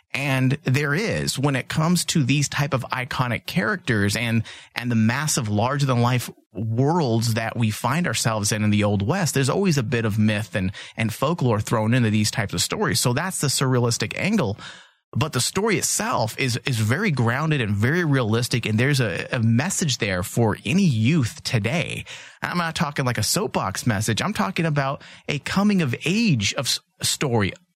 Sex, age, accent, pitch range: male, 30-49, American, 115-150 Hz